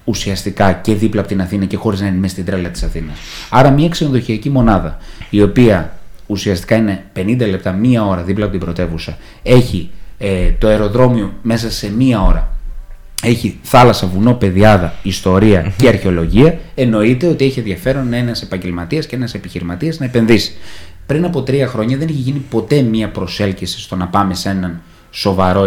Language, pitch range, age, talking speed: Greek, 95-130 Hz, 20-39, 170 wpm